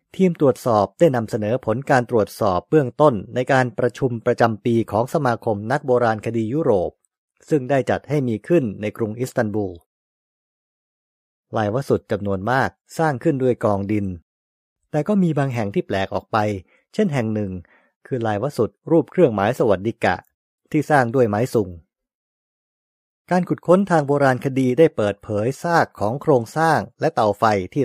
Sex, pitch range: male, 105-145 Hz